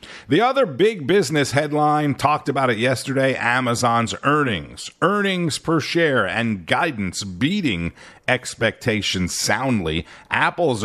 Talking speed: 110 wpm